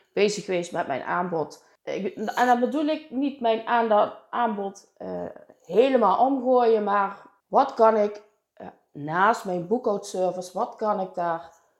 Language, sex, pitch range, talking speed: Dutch, female, 180-230 Hz, 135 wpm